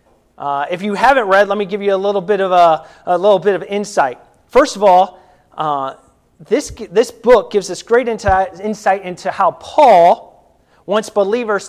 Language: English